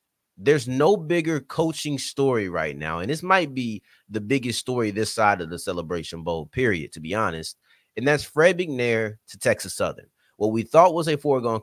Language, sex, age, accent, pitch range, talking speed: English, male, 30-49, American, 110-145 Hz, 190 wpm